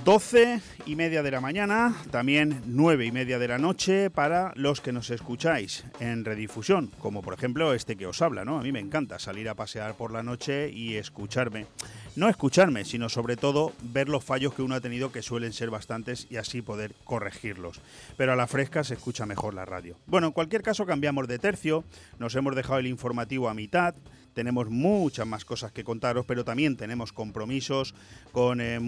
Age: 30-49